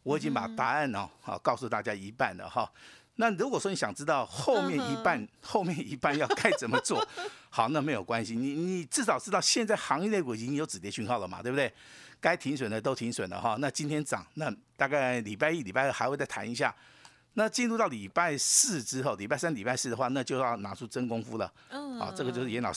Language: Chinese